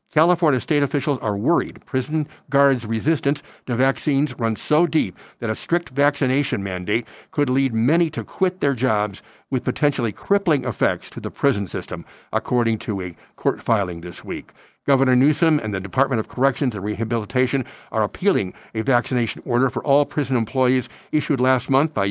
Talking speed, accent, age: 170 wpm, American, 60-79